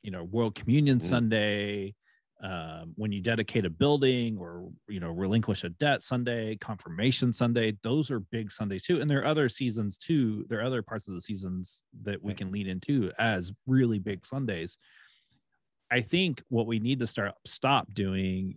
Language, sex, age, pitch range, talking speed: English, male, 30-49, 95-120 Hz, 180 wpm